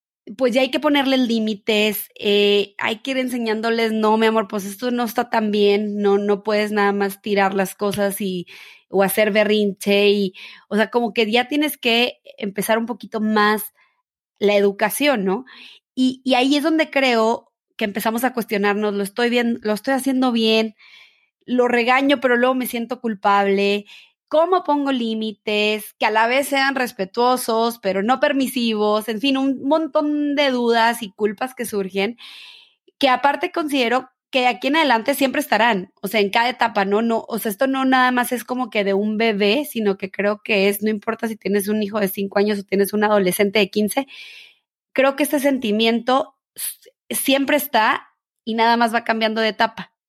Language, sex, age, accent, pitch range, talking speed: Spanish, female, 20-39, Mexican, 205-260 Hz, 185 wpm